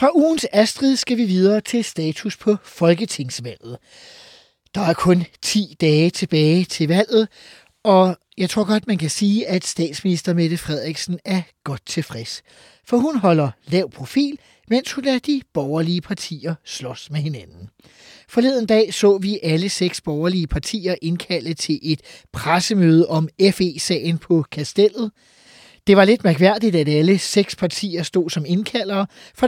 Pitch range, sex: 160-210 Hz, male